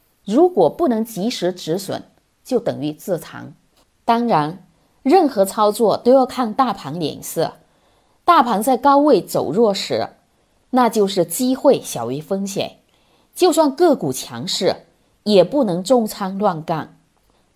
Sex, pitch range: female, 175-260 Hz